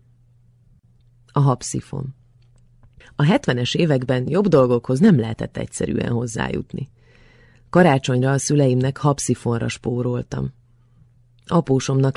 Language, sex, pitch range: Hungarian, female, 120-135 Hz